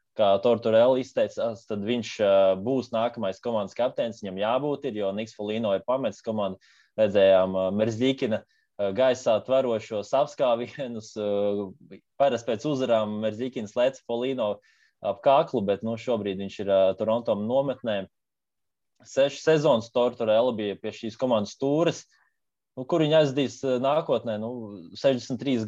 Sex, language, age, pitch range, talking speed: male, English, 20-39, 105-140 Hz, 120 wpm